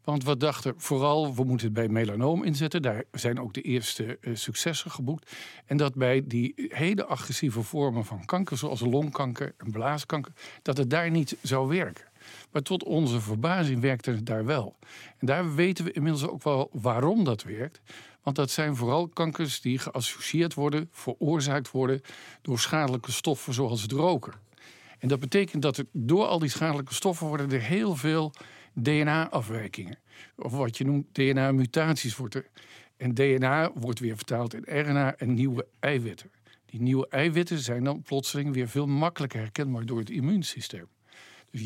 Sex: male